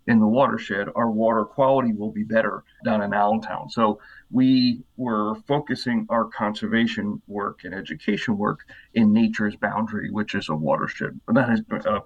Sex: male